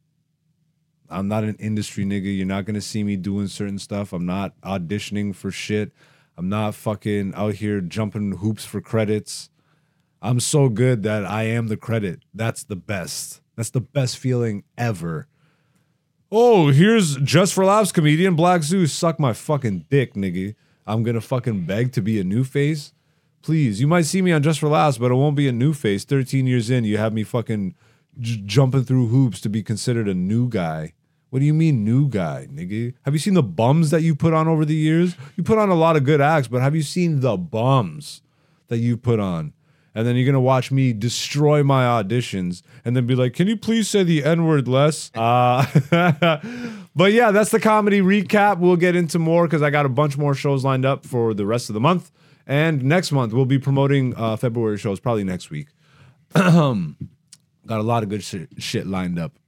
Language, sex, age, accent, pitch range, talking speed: English, male, 30-49, American, 110-160 Hz, 205 wpm